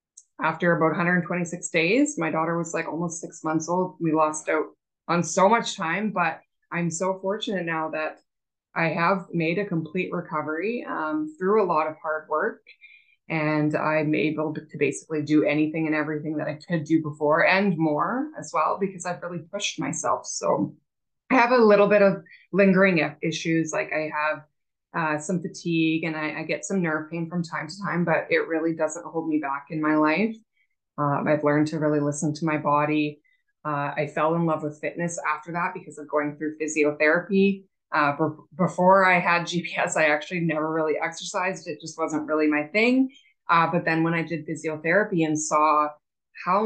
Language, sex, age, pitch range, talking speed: English, female, 20-39, 155-180 Hz, 190 wpm